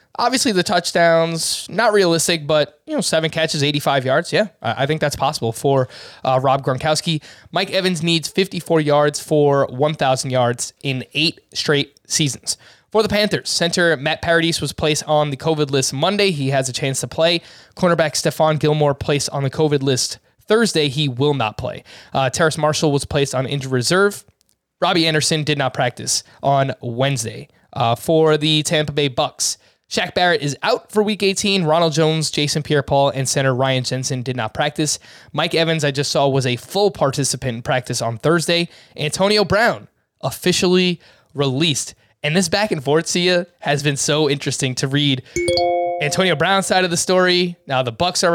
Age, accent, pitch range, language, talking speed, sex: 20-39, American, 135-170 Hz, English, 175 wpm, male